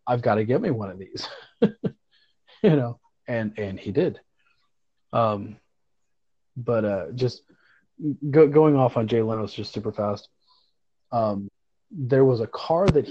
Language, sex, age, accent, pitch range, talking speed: English, male, 30-49, American, 115-135 Hz, 145 wpm